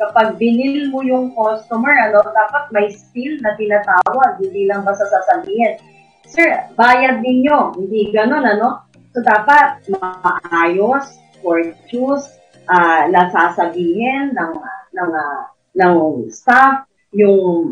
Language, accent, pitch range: Filipino, native, 190-280 Hz